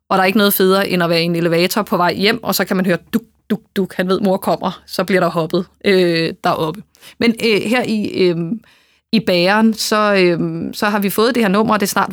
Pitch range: 180-215 Hz